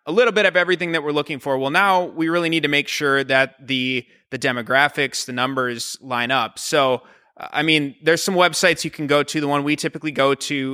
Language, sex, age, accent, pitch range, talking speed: English, male, 20-39, American, 130-155 Hz, 230 wpm